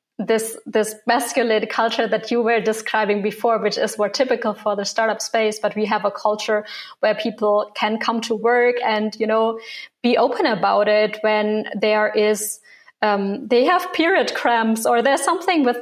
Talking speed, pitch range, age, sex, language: 180 wpm, 205-235 Hz, 20-39, female, English